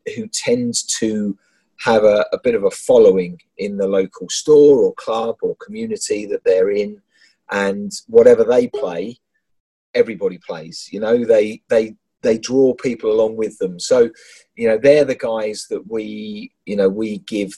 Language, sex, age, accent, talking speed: English, male, 30-49, British, 165 wpm